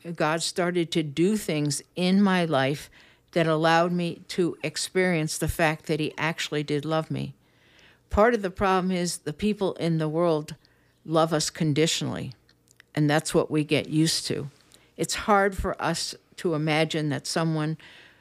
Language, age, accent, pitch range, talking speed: English, 60-79, American, 155-185 Hz, 160 wpm